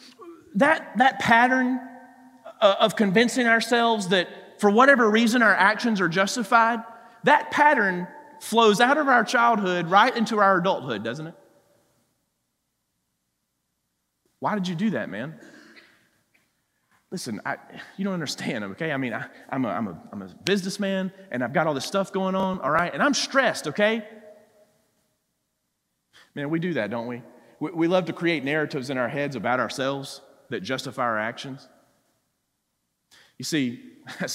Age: 30-49